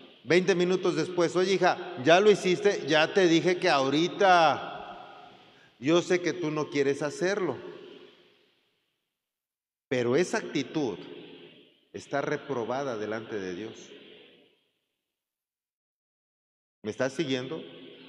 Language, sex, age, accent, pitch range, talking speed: Spanish, male, 40-59, Mexican, 135-180 Hz, 105 wpm